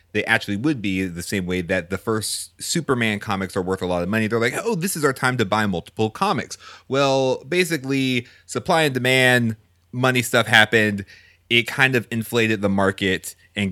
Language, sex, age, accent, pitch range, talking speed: English, male, 30-49, American, 95-125 Hz, 195 wpm